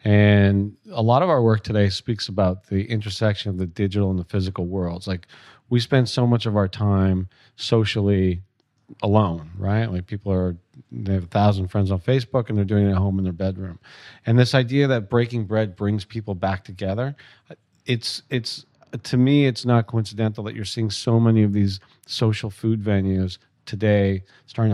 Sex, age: male, 40-59